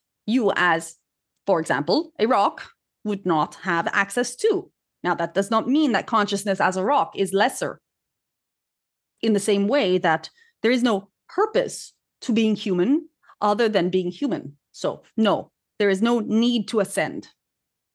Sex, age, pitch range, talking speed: female, 30-49, 185-250 Hz, 155 wpm